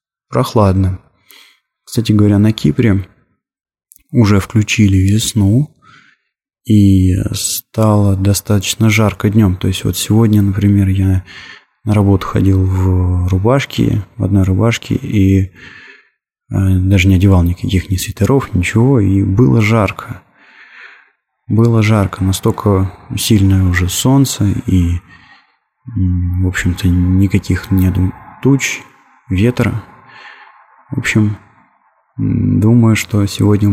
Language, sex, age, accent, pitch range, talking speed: Russian, male, 20-39, native, 95-115 Hz, 100 wpm